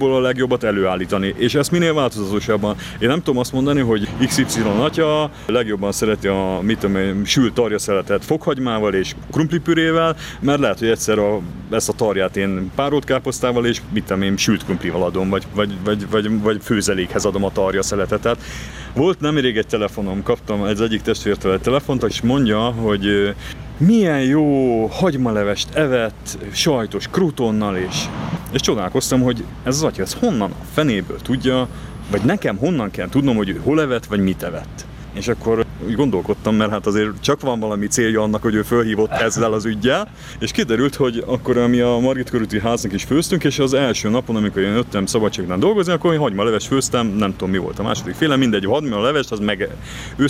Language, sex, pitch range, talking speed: Hungarian, male, 100-130 Hz, 185 wpm